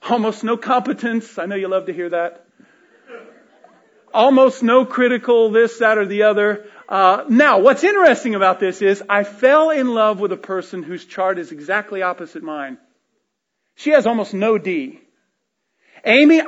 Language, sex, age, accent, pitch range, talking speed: English, male, 40-59, American, 195-255 Hz, 160 wpm